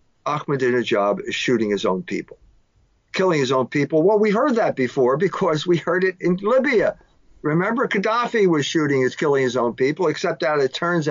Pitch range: 130-175 Hz